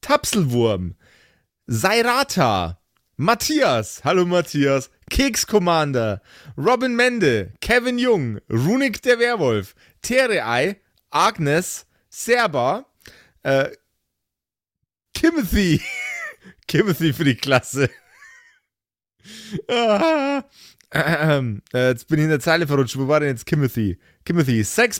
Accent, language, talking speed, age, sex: German, German, 100 wpm, 30-49, male